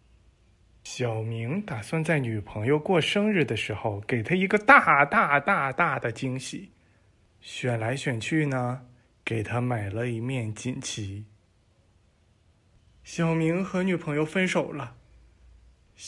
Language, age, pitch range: Chinese, 20-39, 110-170 Hz